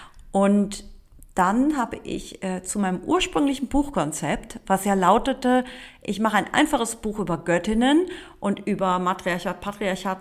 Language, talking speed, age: German, 135 wpm, 40-59